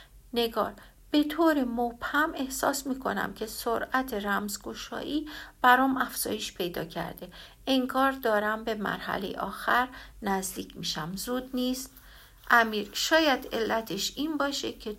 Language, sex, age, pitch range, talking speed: Persian, female, 60-79, 200-260 Hz, 110 wpm